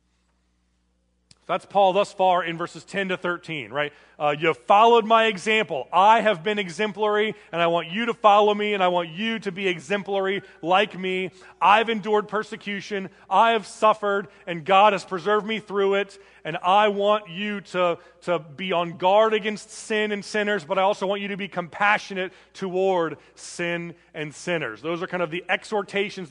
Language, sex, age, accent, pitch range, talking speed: English, male, 30-49, American, 175-210 Hz, 180 wpm